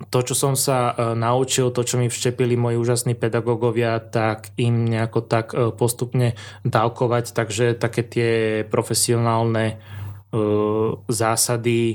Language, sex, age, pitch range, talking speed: Slovak, male, 20-39, 110-120 Hz, 115 wpm